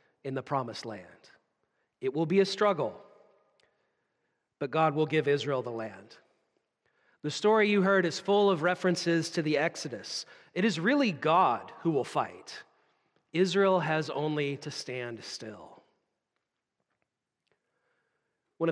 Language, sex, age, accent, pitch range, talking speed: English, male, 40-59, American, 150-205 Hz, 130 wpm